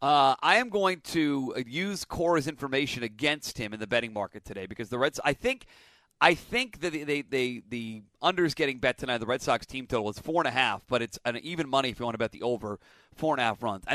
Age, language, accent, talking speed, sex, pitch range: 40-59, English, American, 260 wpm, male, 125-175 Hz